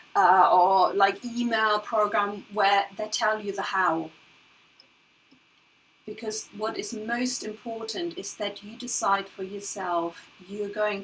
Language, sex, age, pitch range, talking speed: English, female, 30-49, 195-235 Hz, 130 wpm